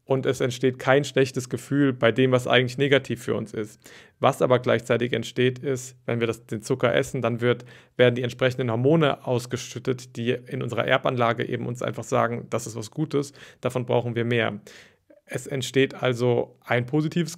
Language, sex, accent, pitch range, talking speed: German, male, German, 120-140 Hz, 185 wpm